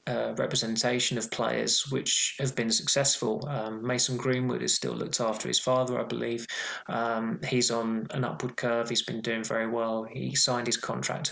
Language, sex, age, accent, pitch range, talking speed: English, male, 20-39, British, 115-130 Hz, 180 wpm